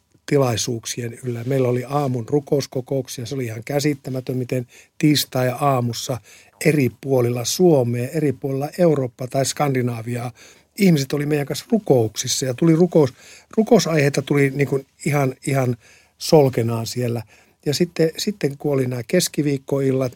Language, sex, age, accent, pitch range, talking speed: Finnish, male, 50-69, native, 125-145 Hz, 130 wpm